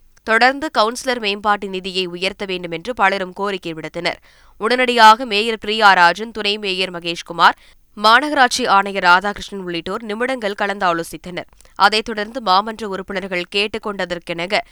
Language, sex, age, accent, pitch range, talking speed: Tamil, female, 20-39, native, 180-220 Hz, 110 wpm